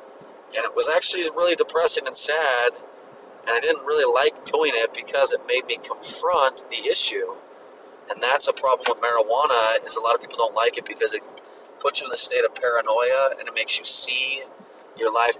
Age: 30-49